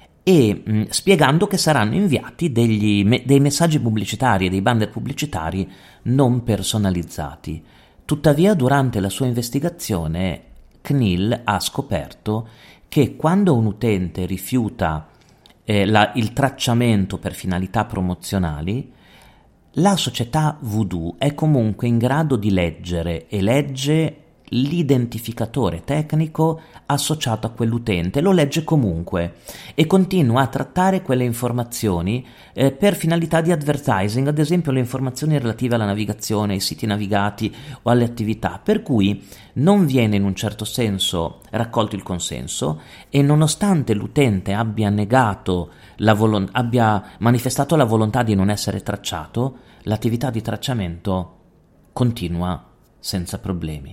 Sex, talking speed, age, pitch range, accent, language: male, 120 wpm, 40-59, 100-140 Hz, native, Italian